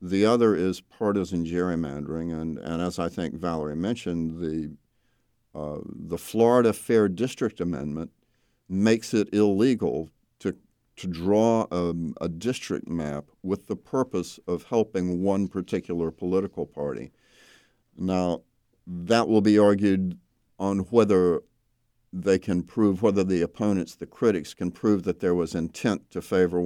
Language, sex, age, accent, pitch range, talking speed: English, male, 50-69, American, 85-100 Hz, 135 wpm